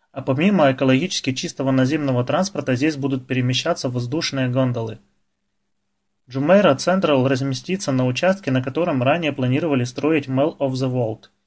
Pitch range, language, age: 125-150 Hz, Russian, 20-39